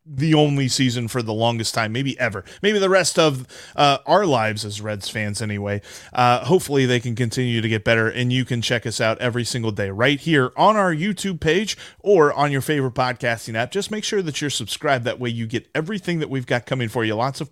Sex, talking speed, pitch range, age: male, 235 wpm, 115-160 Hz, 30-49